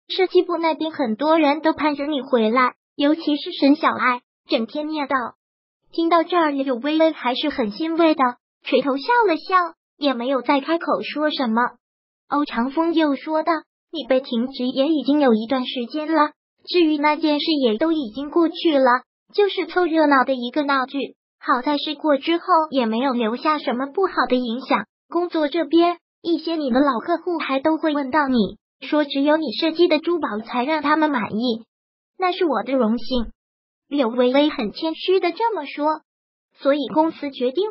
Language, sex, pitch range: Chinese, male, 265-325 Hz